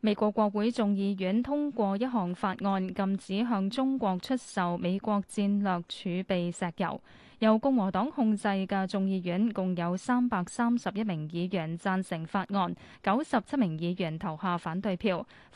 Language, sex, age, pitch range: Chinese, female, 10-29, 185-235 Hz